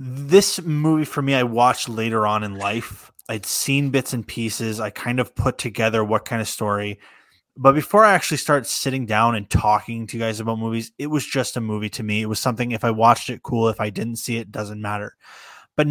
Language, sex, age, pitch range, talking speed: English, male, 20-39, 110-135 Hz, 230 wpm